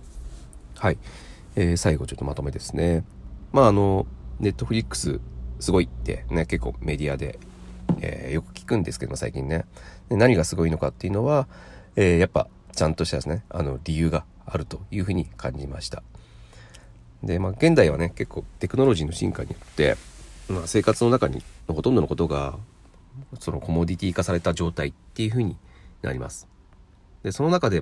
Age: 40-59